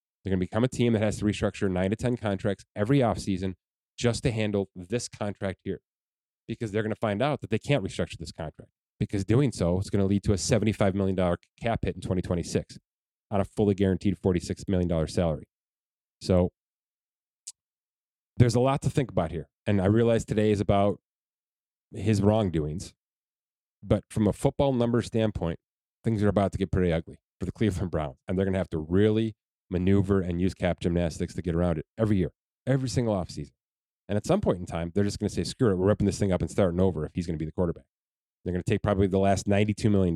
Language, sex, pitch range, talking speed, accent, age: English, male, 90-110 Hz, 220 wpm, American, 30-49